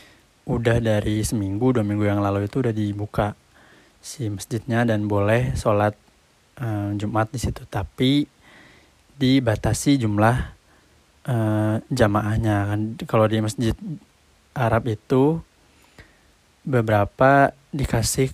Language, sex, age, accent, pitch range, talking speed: Indonesian, male, 20-39, native, 105-120 Hz, 105 wpm